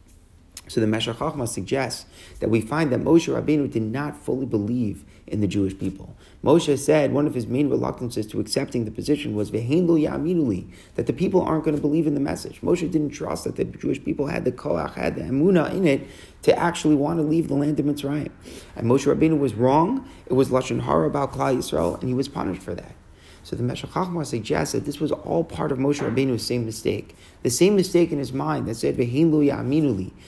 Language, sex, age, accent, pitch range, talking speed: English, male, 30-49, American, 115-150 Hz, 210 wpm